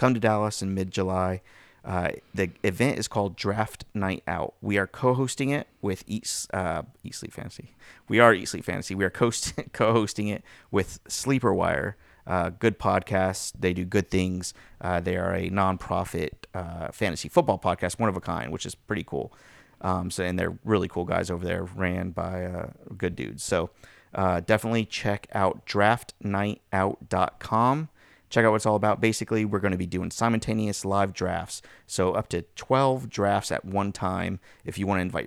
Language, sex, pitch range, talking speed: English, male, 90-110 Hz, 180 wpm